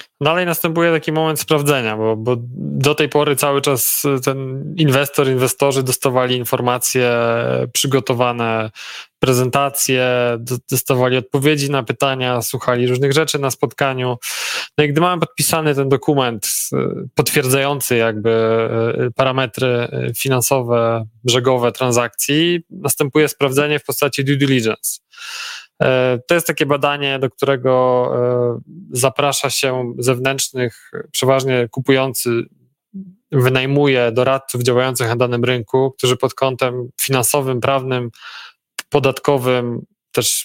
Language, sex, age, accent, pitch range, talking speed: Polish, male, 20-39, native, 125-145 Hz, 105 wpm